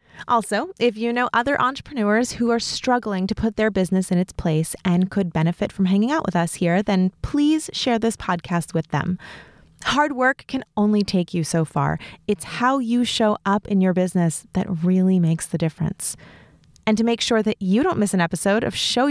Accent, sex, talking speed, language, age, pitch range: American, female, 205 wpm, English, 30-49, 175-235 Hz